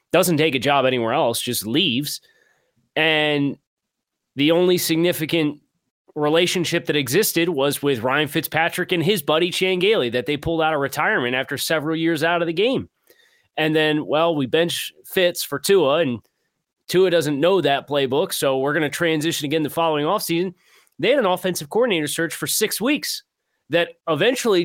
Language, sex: English, male